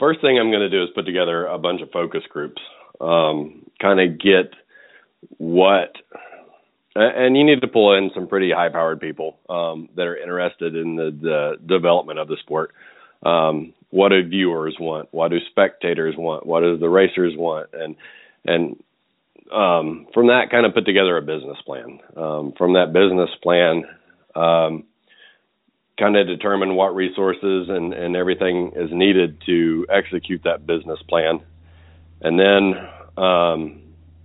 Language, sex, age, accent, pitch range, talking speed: English, male, 40-59, American, 80-95 Hz, 160 wpm